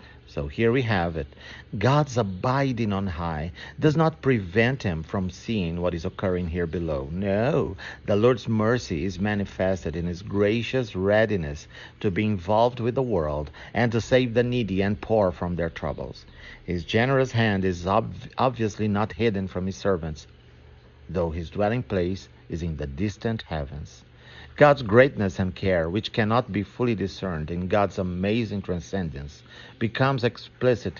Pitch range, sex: 85-115 Hz, male